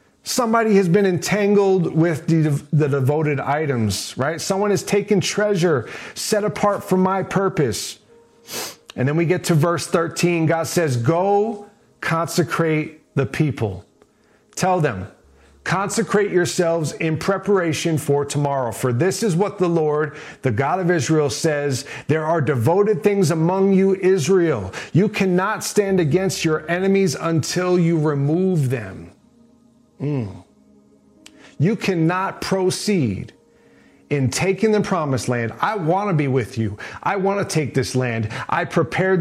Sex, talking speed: male, 140 wpm